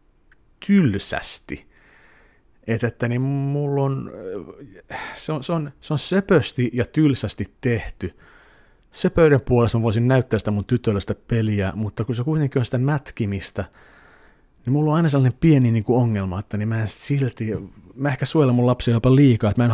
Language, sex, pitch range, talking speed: Finnish, male, 100-125 Hz, 160 wpm